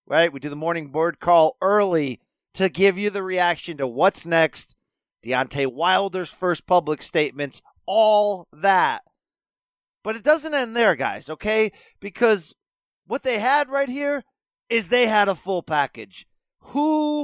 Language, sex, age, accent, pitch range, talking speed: English, male, 40-59, American, 150-205 Hz, 150 wpm